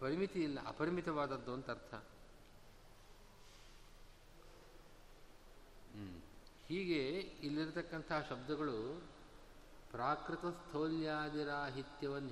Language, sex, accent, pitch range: Kannada, male, native, 130-155 Hz